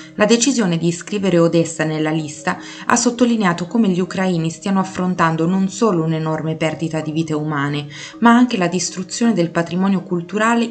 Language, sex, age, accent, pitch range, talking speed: Italian, female, 20-39, native, 160-190 Hz, 155 wpm